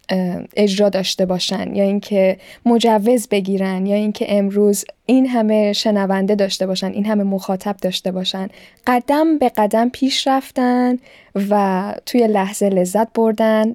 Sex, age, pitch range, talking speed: female, 10-29, 195-230 Hz, 130 wpm